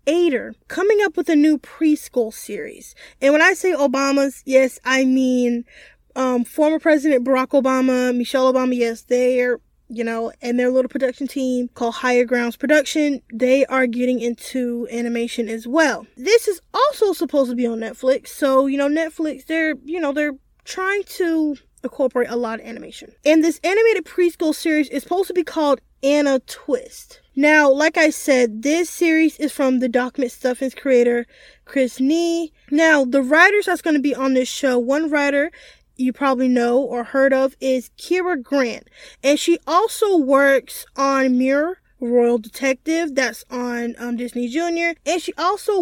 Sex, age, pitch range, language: female, 10-29, 250-315 Hz, English